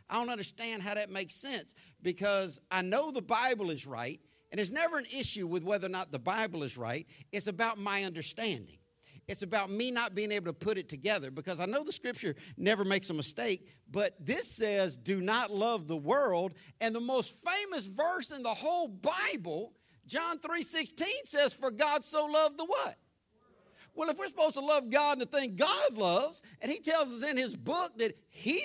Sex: male